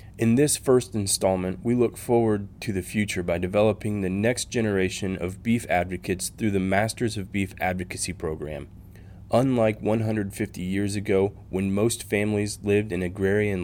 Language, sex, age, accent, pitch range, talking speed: English, male, 20-39, American, 95-110 Hz, 155 wpm